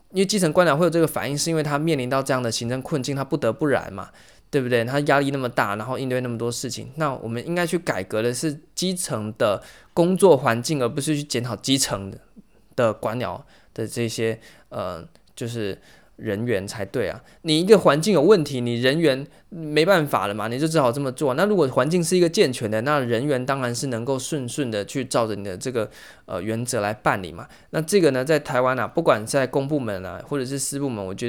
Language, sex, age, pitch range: Chinese, male, 20-39, 115-150 Hz